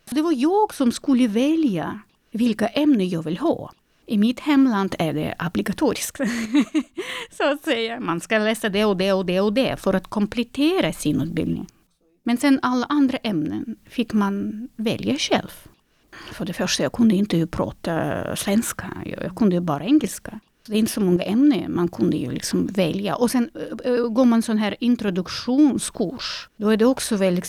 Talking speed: 175 wpm